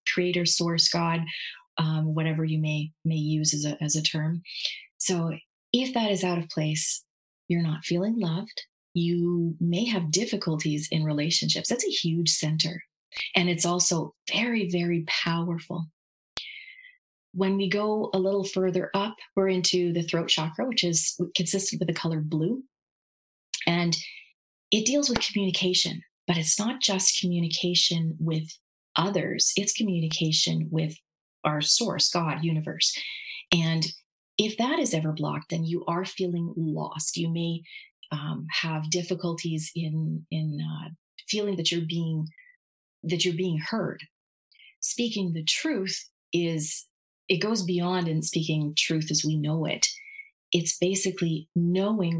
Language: English